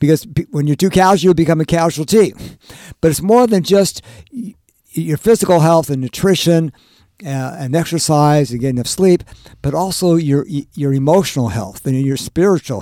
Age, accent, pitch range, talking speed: 50-69, American, 135-175 Hz, 160 wpm